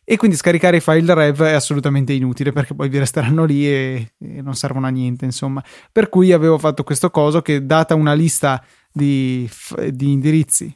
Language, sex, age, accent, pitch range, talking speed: Italian, male, 20-39, native, 140-170 Hz, 190 wpm